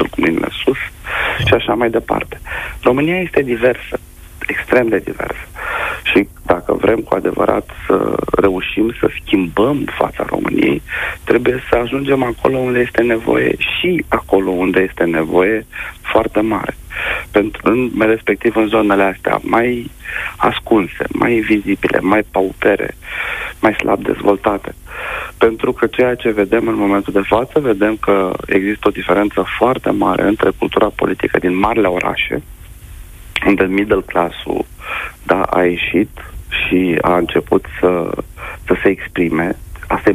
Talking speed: 135 wpm